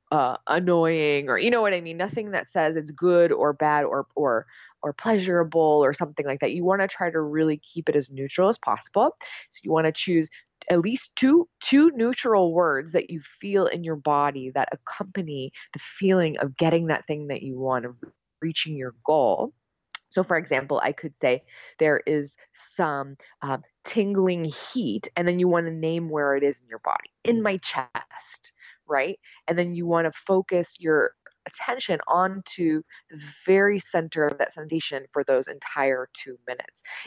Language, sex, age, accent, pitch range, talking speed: English, female, 20-39, American, 140-185 Hz, 185 wpm